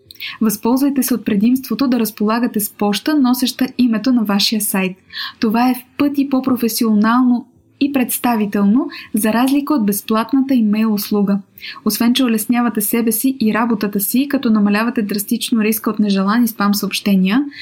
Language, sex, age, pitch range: English, female, 20-39, 215-265 Hz